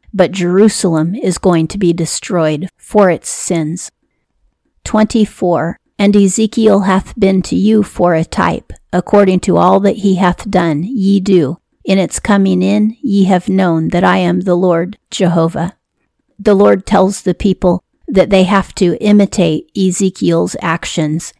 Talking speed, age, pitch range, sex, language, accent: 150 wpm, 40-59, 175-200 Hz, female, English, American